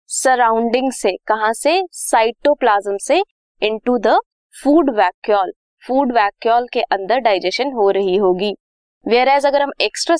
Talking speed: 120 wpm